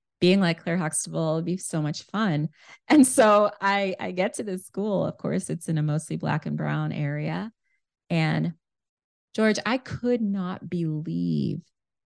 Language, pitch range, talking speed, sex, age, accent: English, 145-195 Hz, 165 wpm, female, 20-39, American